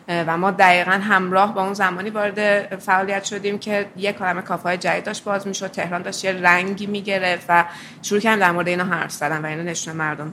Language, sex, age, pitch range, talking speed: Persian, female, 20-39, 180-215 Hz, 210 wpm